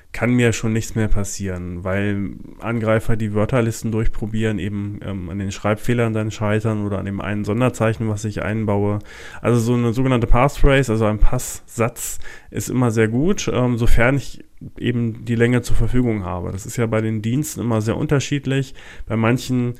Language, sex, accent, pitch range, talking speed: German, male, German, 105-120 Hz, 175 wpm